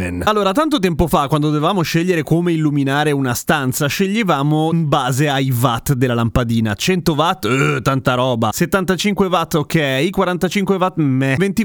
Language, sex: Italian, male